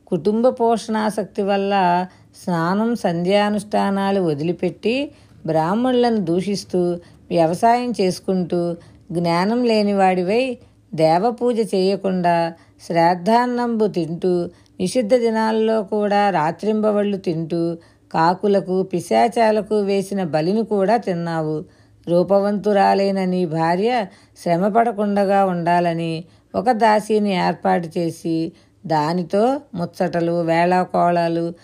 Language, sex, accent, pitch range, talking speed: Telugu, female, native, 170-215 Hz, 75 wpm